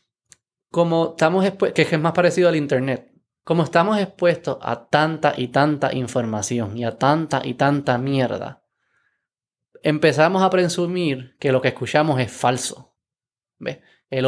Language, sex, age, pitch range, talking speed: Spanish, male, 20-39, 135-175 Hz, 125 wpm